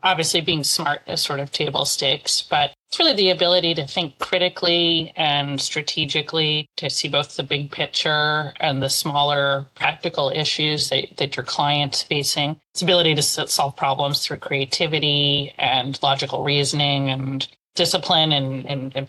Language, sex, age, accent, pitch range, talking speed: English, female, 30-49, American, 140-160 Hz, 155 wpm